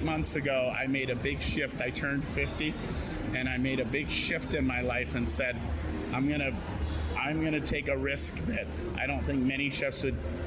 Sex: male